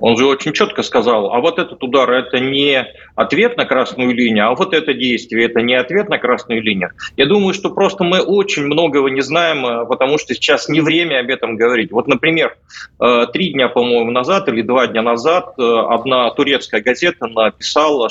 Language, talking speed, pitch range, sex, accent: Russian, 185 wpm, 120-170 Hz, male, native